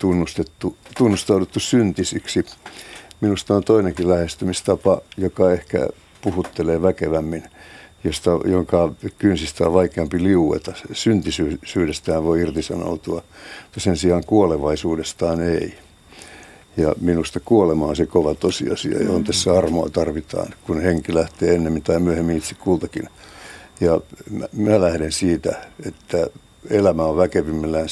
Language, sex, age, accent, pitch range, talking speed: Finnish, male, 60-79, native, 80-90 Hz, 115 wpm